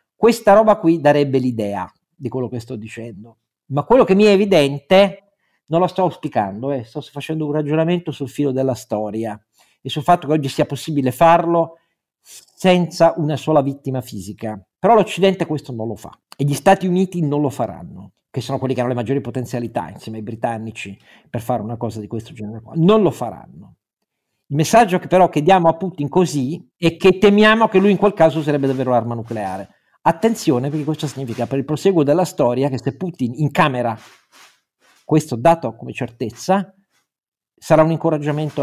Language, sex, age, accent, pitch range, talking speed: Italian, male, 50-69, native, 120-165 Hz, 185 wpm